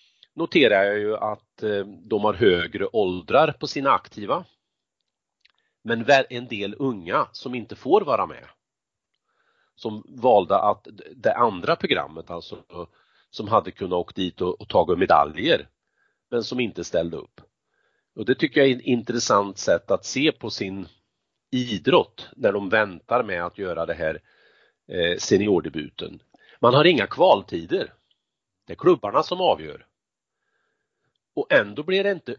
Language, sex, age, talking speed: Swedish, male, 40-59, 145 wpm